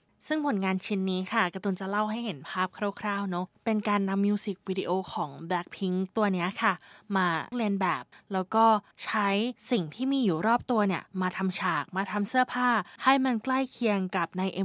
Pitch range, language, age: 190-230 Hz, English, 20-39